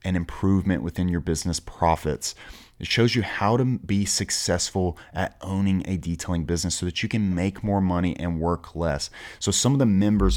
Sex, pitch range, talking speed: male, 85-100 Hz, 190 wpm